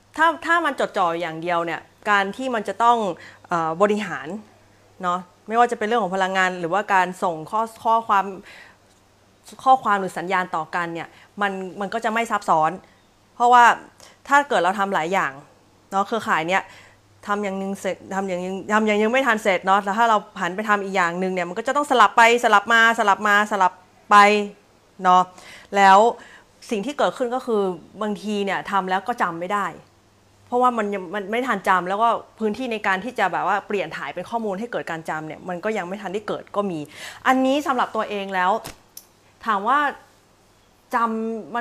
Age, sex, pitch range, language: 30-49, female, 185-230 Hz, Thai